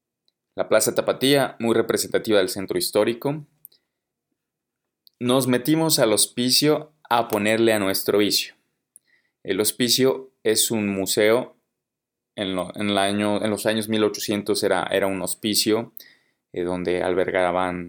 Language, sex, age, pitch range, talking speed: English, male, 20-39, 95-120 Hz, 130 wpm